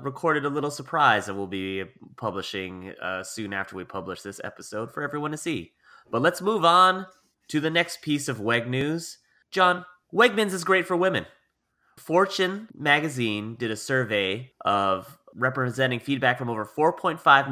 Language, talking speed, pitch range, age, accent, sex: English, 160 wpm, 110-145 Hz, 30-49, American, male